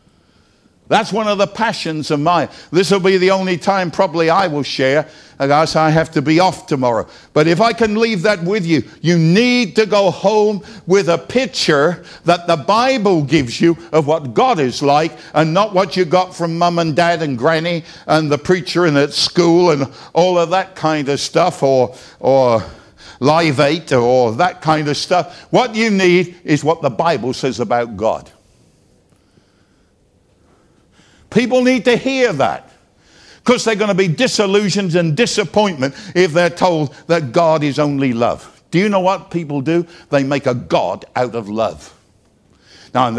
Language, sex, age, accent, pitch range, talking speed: English, male, 60-79, British, 135-185 Hz, 180 wpm